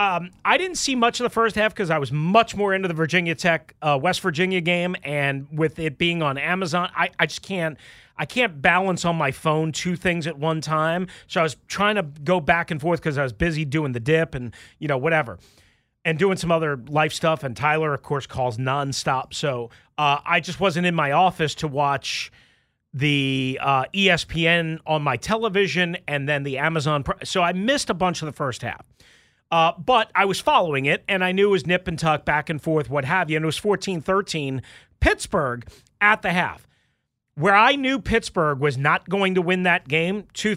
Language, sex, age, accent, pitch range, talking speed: English, male, 30-49, American, 150-195 Hz, 215 wpm